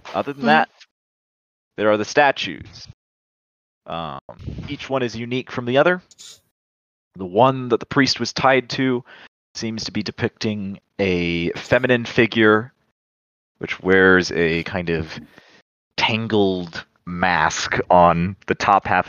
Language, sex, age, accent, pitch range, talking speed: English, male, 30-49, American, 85-110 Hz, 130 wpm